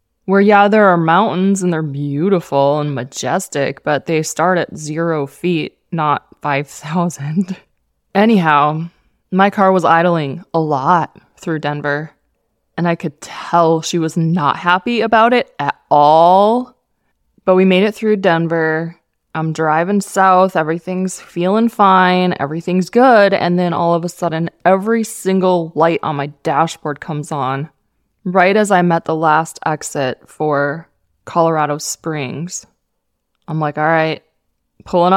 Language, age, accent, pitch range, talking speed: English, 20-39, American, 155-190 Hz, 140 wpm